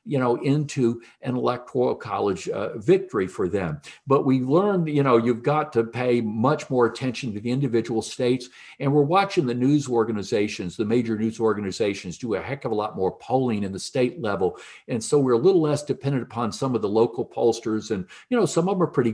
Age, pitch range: 60-79, 115-150 Hz